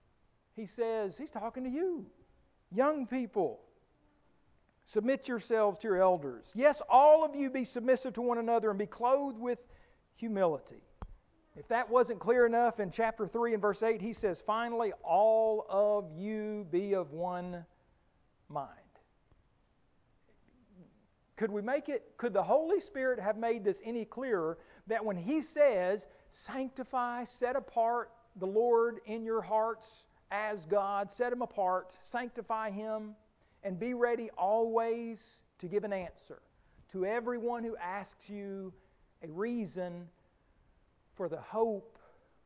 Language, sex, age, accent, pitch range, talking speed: English, male, 50-69, American, 200-240 Hz, 140 wpm